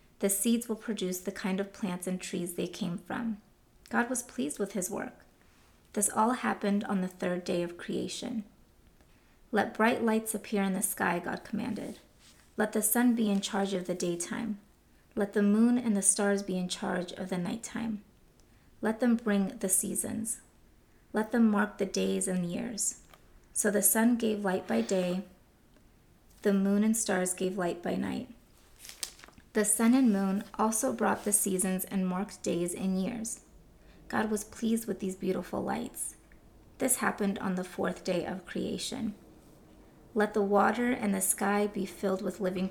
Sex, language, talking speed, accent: female, English, 175 wpm, American